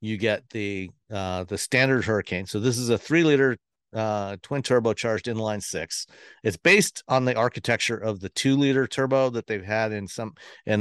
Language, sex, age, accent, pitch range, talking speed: English, male, 50-69, American, 100-130 Hz, 190 wpm